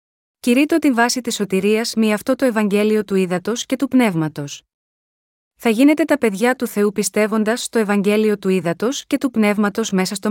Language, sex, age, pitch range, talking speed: Greek, female, 30-49, 205-250 Hz, 175 wpm